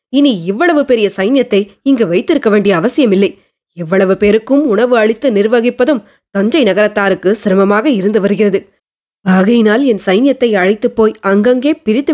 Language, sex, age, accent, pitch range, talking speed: Tamil, female, 20-39, native, 200-250 Hz, 125 wpm